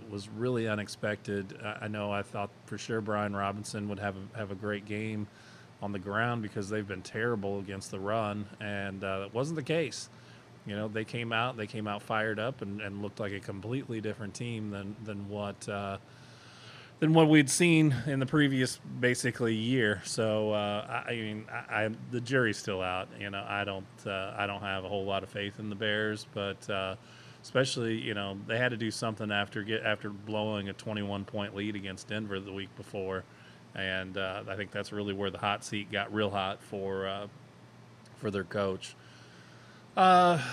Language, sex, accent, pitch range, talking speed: English, male, American, 100-120 Hz, 200 wpm